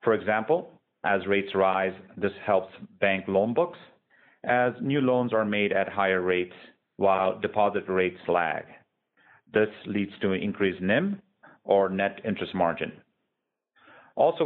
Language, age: English, 40-59